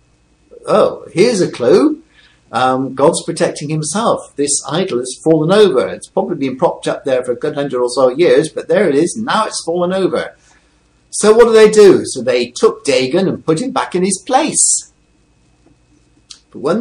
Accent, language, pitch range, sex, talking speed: British, English, 130-195 Hz, male, 185 wpm